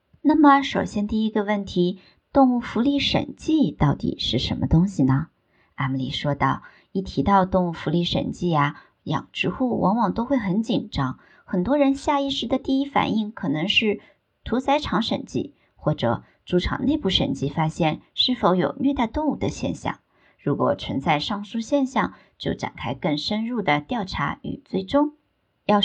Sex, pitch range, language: male, 165-240 Hz, Chinese